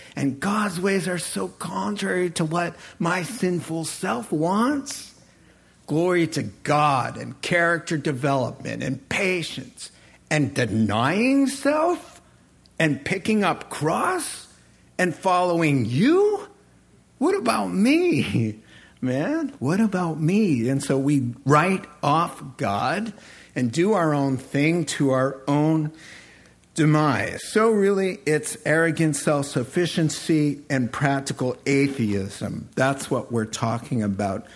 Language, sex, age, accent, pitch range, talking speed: English, male, 50-69, American, 130-175 Hz, 115 wpm